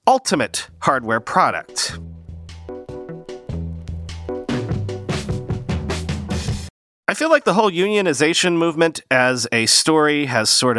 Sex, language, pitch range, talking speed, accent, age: male, English, 120-165 Hz, 85 wpm, American, 40-59